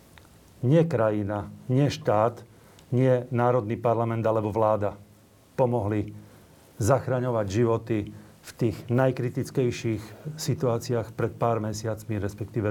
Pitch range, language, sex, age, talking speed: 115-140 Hz, Slovak, male, 40-59, 95 wpm